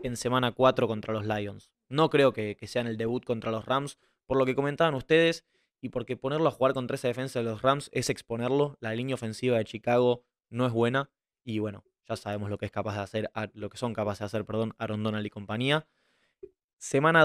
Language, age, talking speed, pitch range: Spanish, 20-39, 225 wpm, 115-140 Hz